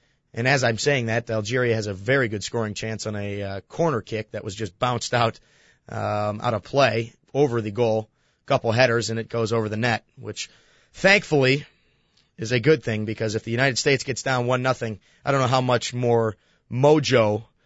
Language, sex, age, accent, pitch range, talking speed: English, male, 30-49, American, 115-145 Hz, 200 wpm